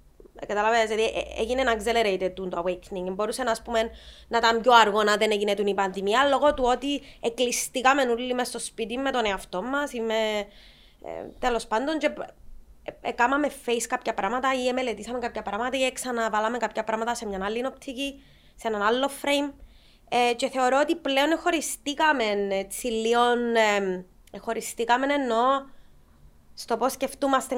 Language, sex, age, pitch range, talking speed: Greek, female, 20-39, 210-255 Hz, 135 wpm